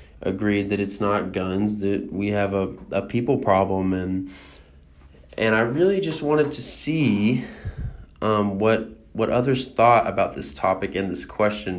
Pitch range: 95-110 Hz